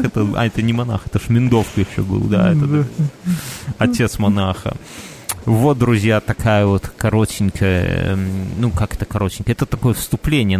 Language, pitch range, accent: Russian, 100-120 Hz, native